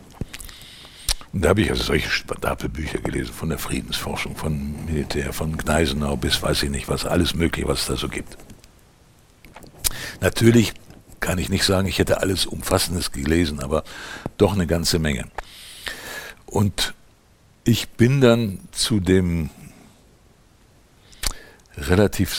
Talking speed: 130 wpm